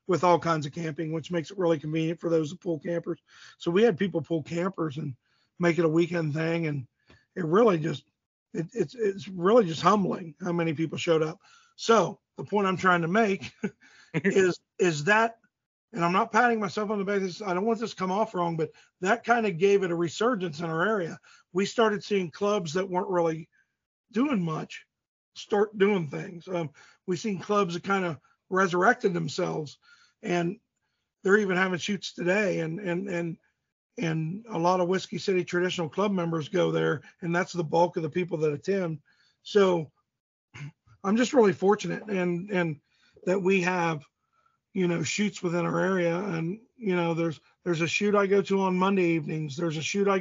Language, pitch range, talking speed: English, 165-200 Hz, 195 wpm